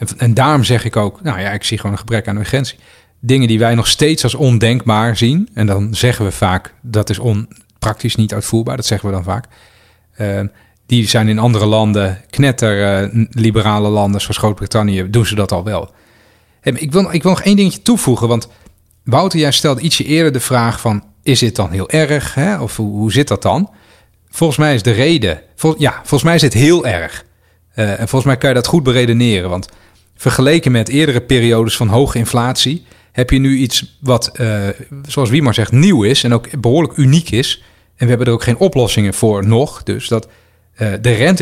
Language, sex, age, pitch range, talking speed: Dutch, male, 40-59, 105-135 Hz, 210 wpm